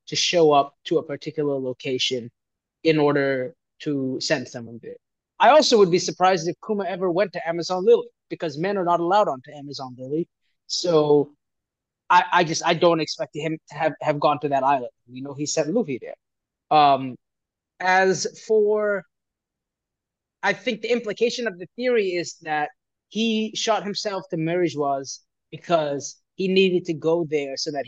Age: 20-39